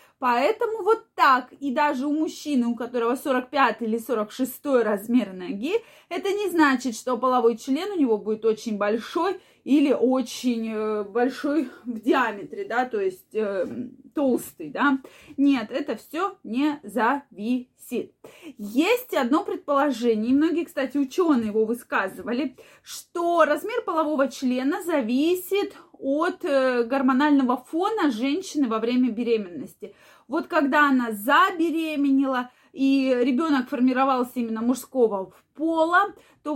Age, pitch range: 20-39, 230-295 Hz